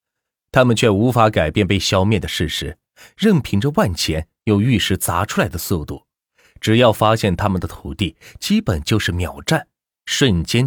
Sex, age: male, 30-49